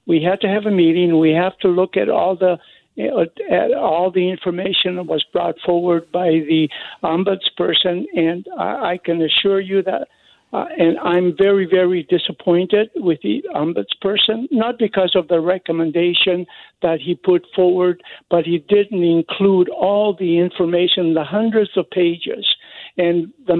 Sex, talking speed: male, 155 wpm